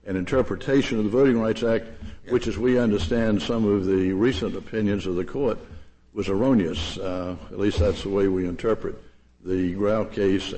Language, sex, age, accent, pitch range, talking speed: English, male, 60-79, American, 90-115 Hz, 180 wpm